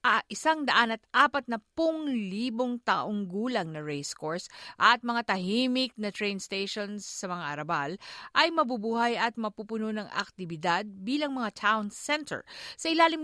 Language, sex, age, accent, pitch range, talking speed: Filipino, female, 50-69, native, 180-245 Hz, 155 wpm